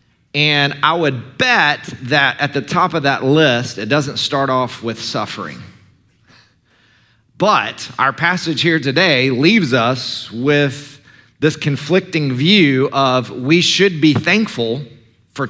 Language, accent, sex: English, American, male